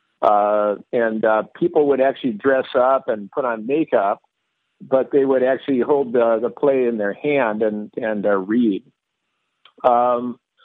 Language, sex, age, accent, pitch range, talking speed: English, male, 50-69, American, 110-135 Hz, 160 wpm